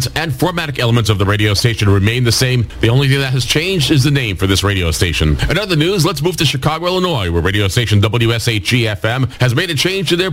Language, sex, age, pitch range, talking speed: English, male, 40-59, 105-145 Hz, 240 wpm